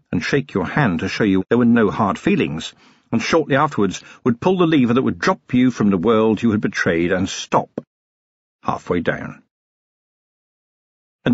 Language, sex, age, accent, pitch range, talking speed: English, male, 50-69, British, 105-135 Hz, 180 wpm